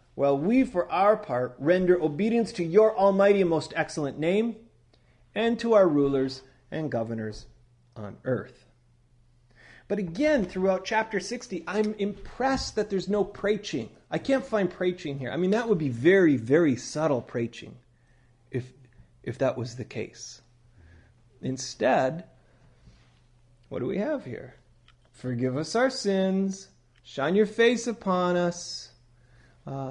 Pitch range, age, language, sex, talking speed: 120-185 Hz, 40-59, English, male, 140 wpm